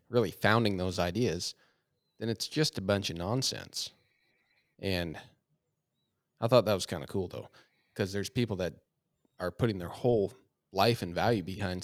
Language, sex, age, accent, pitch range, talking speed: English, male, 40-59, American, 100-125 Hz, 160 wpm